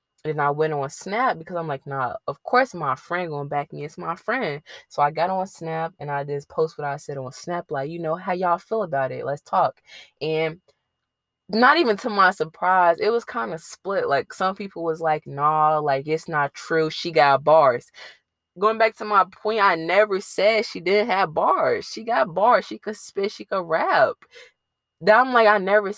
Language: English